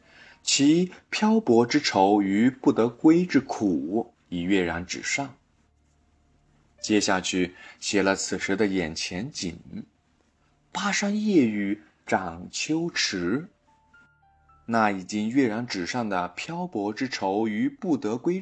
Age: 20-39